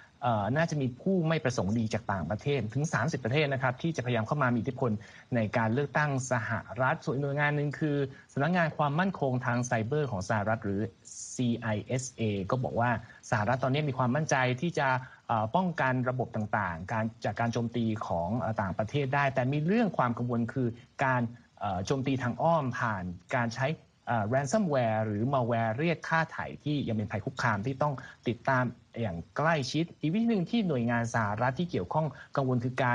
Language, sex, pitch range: Thai, male, 115-145 Hz